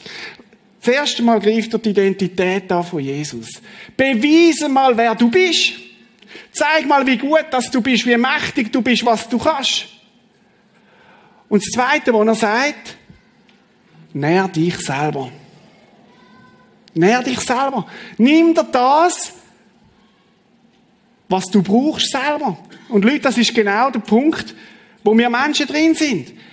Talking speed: 135 wpm